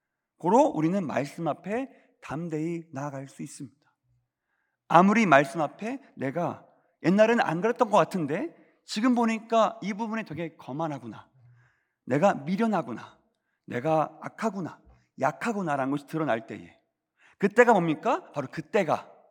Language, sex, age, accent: Korean, male, 40-59, native